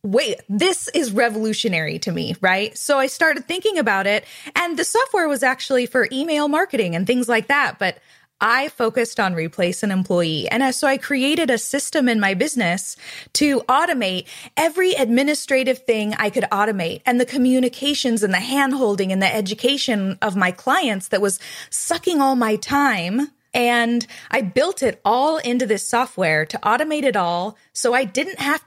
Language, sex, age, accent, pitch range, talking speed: English, female, 20-39, American, 200-270 Hz, 175 wpm